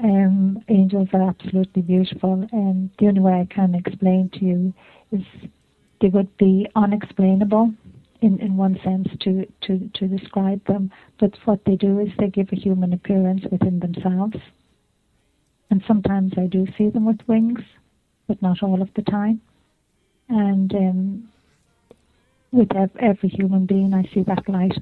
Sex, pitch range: female, 185-210 Hz